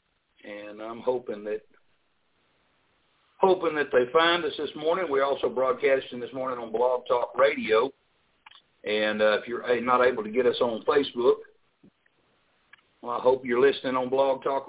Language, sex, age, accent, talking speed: English, male, 60-79, American, 160 wpm